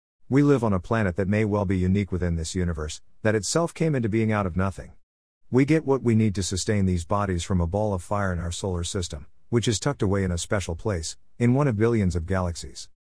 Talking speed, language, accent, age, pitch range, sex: 240 wpm, English, American, 50-69, 85-110 Hz, male